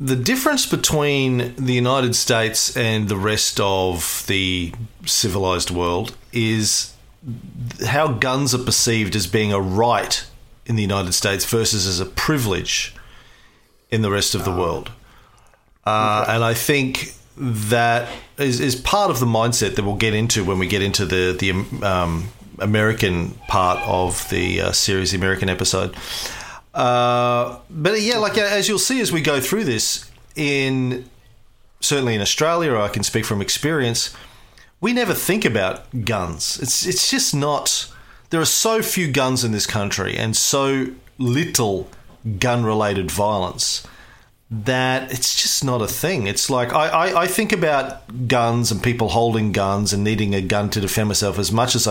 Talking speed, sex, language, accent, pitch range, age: 160 wpm, male, English, Australian, 100-130 Hz, 40-59